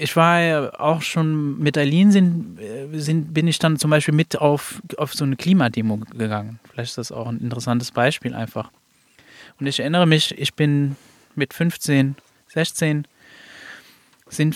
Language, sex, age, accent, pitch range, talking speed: German, male, 20-39, German, 120-150 Hz, 155 wpm